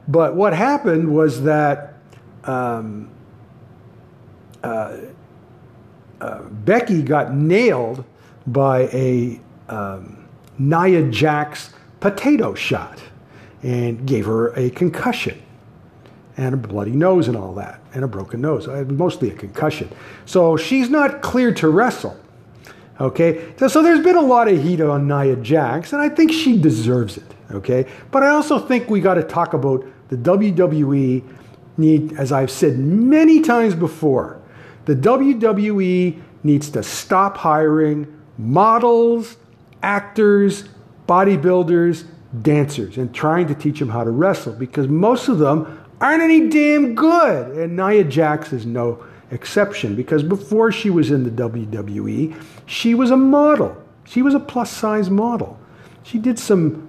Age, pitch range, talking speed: 50-69, 125-200 Hz, 140 wpm